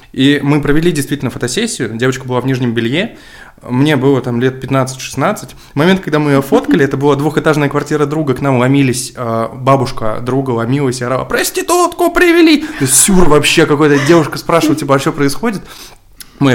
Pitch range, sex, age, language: 115-145 Hz, male, 20-39, Russian